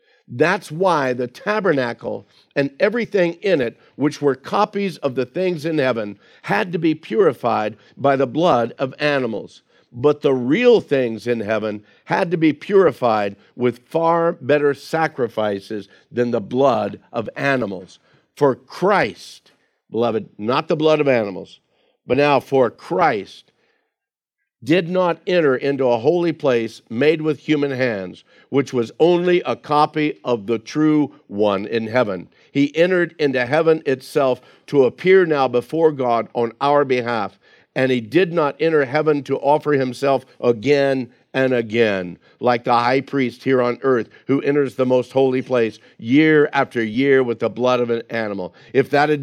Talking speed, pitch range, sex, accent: 155 wpm, 120-150 Hz, male, American